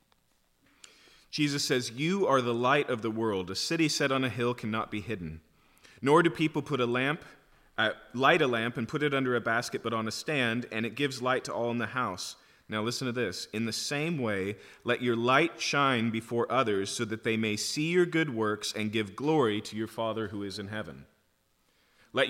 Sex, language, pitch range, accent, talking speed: male, English, 115-150 Hz, American, 215 wpm